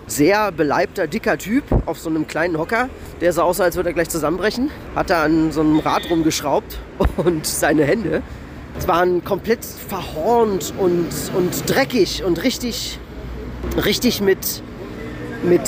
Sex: male